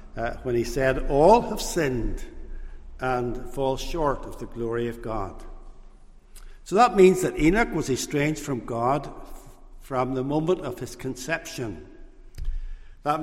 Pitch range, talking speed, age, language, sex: 125-165 Hz, 140 wpm, 60-79, English, male